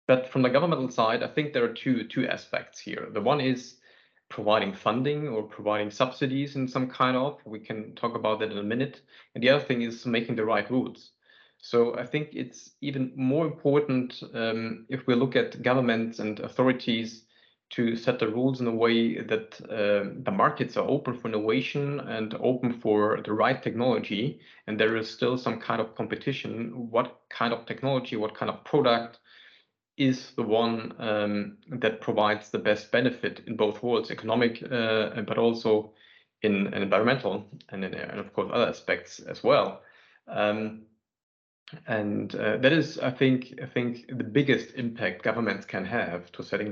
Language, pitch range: English, 110-130 Hz